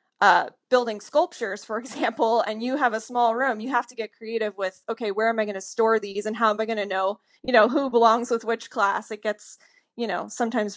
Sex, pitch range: female, 205-235 Hz